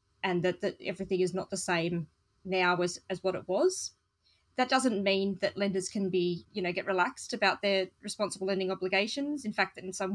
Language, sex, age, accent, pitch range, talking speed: English, female, 20-39, Australian, 180-205 Hz, 205 wpm